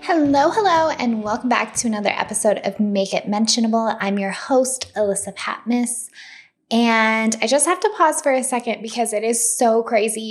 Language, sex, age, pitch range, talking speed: English, female, 10-29, 200-270 Hz, 180 wpm